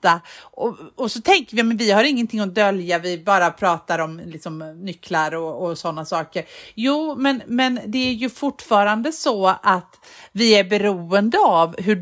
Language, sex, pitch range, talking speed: Swedish, female, 180-260 Hz, 170 wpm